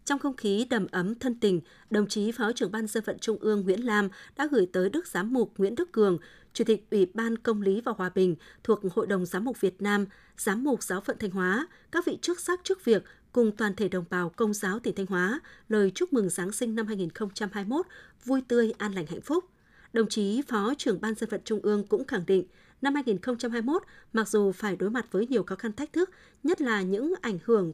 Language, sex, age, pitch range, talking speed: Vietnamese, female, 20-39, 195-250 Hz, 235 wpm